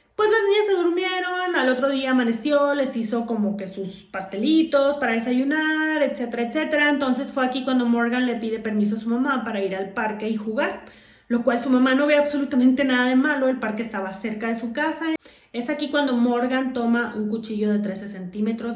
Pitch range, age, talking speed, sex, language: 210-260 Hz, 30-49, 200 wpm, female, Spanish